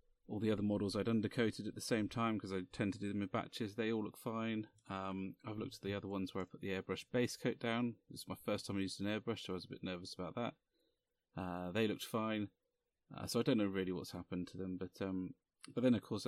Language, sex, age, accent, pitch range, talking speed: English, male, 30-49, British, 95-125 Hz, 270 wpm